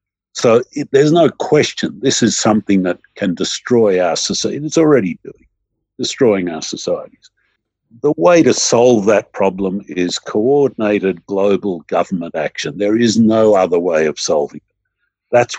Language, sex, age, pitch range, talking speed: English, male, 60-79, 95-120 Hz, 145 wpm